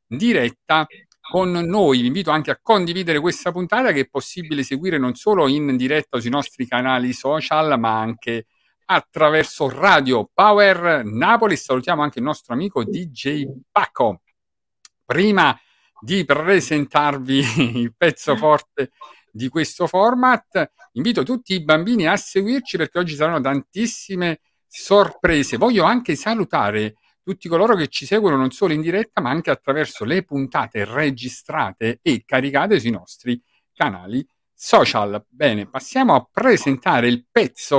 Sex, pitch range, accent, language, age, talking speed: male, 125-190 Hz, native, Italian, 50-69, 135 wpm